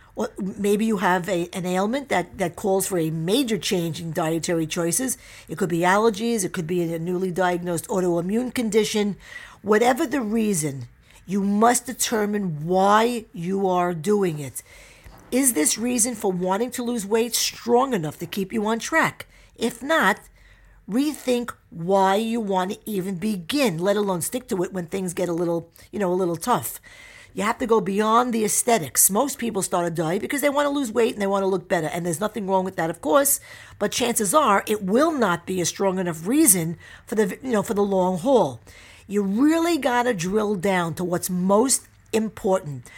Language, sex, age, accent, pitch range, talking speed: English, female, 50-69, American, 175-230 Hz, 195 wpm